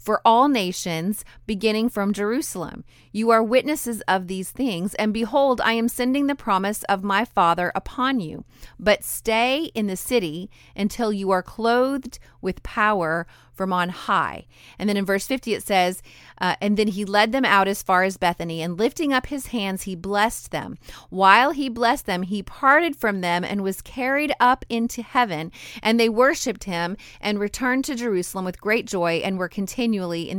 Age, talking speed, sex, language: 30-49, 185 wpm, female, English